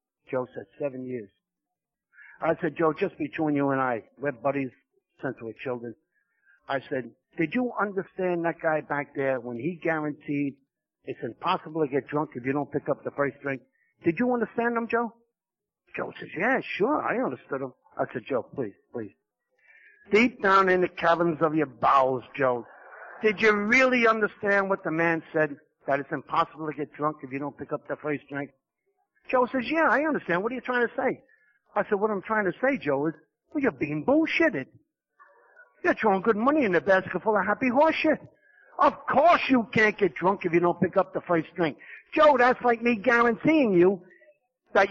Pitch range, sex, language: 150-235 Hz, male, English